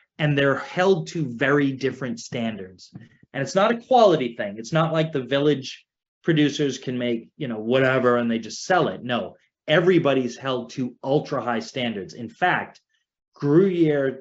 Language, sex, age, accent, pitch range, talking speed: English, male, 30-49, American, 120-150 Hz, 165 wpm